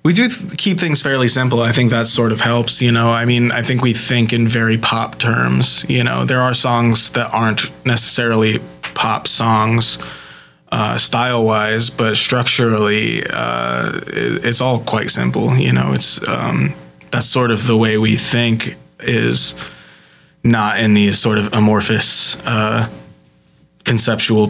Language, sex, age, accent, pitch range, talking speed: English, male, 20-39, American, 105-125 Hz, 155 wpm